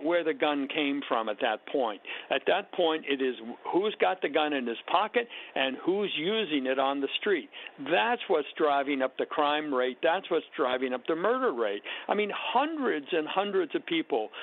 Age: 60-79